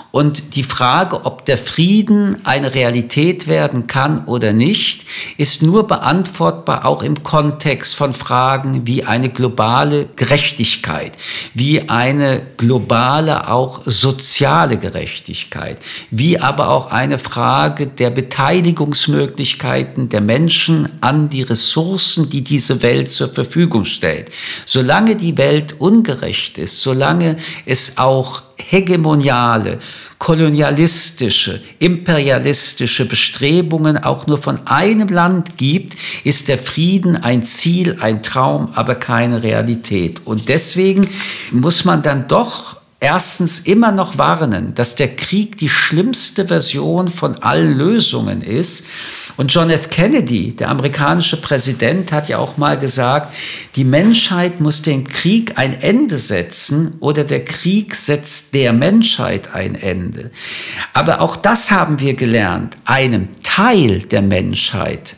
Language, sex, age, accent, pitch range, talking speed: German, male, 50-69, German, 125-170 Hz, 125 wpm